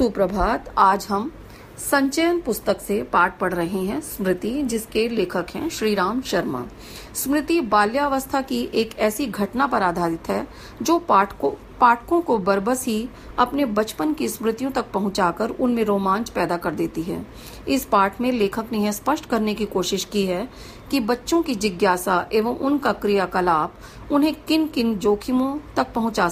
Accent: native